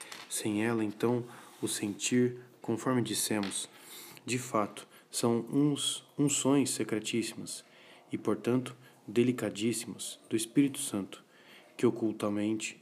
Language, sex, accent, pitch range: Portuguese, male, Brazilian, 105-120 Hz